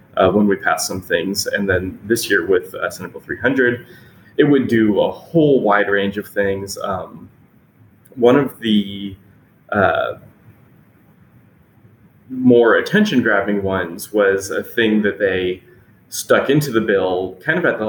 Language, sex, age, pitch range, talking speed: English, male, 20-39, 95-120 Hz, 150 wpm